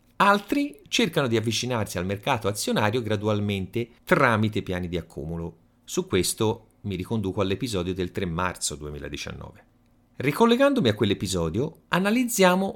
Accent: native